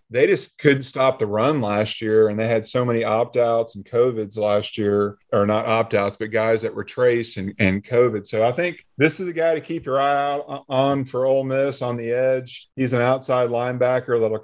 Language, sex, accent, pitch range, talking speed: English, male, American, 110-130 Hz, 220 wpm